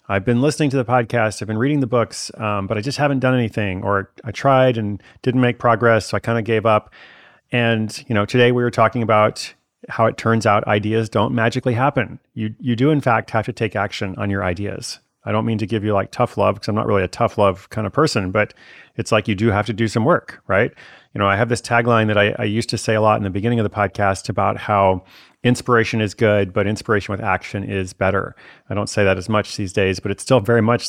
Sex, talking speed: male, 260 wpm